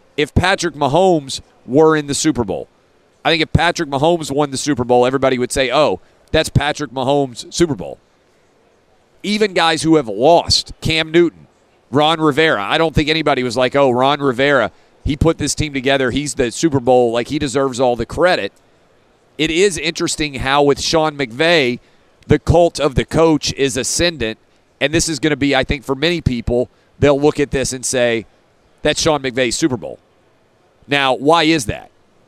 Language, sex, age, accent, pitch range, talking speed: English, male, 40-59, American, 125-160 Hz, 185 wpm